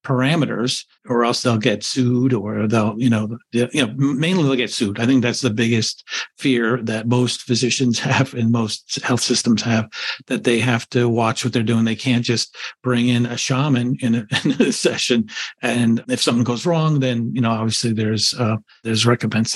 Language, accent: English, American